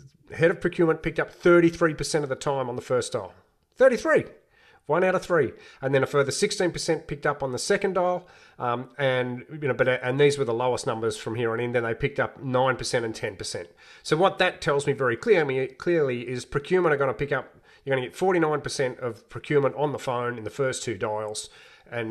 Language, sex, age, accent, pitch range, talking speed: English, male, 40-59, Australian, 125-160 Hz, 230 wpm